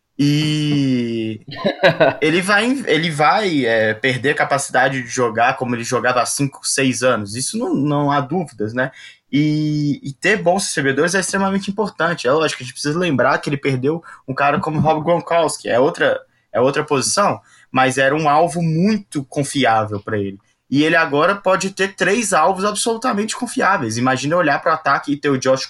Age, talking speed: 20-39, 180 wpm